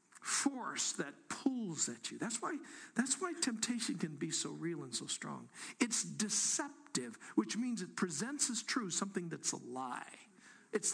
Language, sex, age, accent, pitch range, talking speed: English, male, 60-79, American, 185-275 Hz, 165 wpm